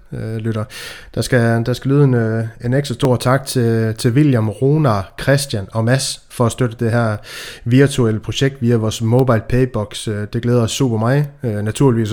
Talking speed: 190 wpm